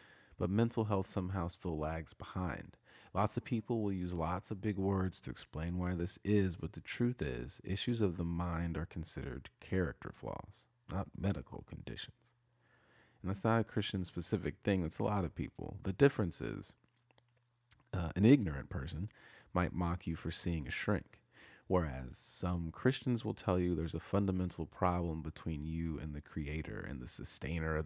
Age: 30-49